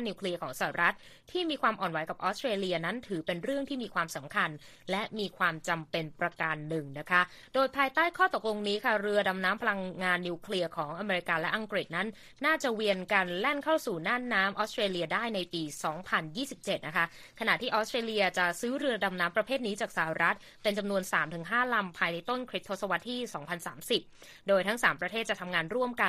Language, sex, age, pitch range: Thai, female, 20-39, 175-235 Hz